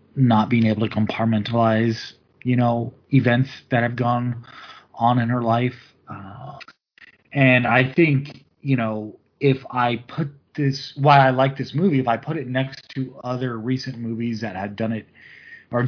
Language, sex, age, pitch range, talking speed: English, male, 30-49, 110-130 Hz, 165 wpm